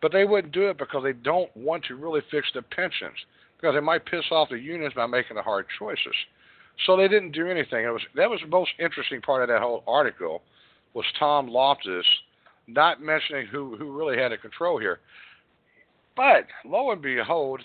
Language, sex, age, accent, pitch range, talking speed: English, male, 60-79, American, 135-195 Hz, 200 wpm